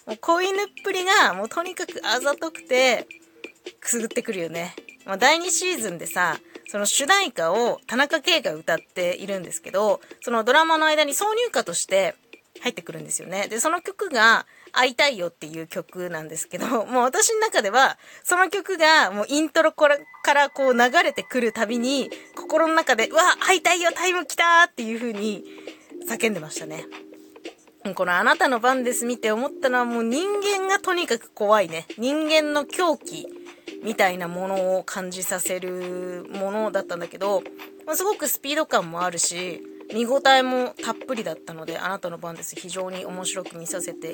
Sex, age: female, 20-39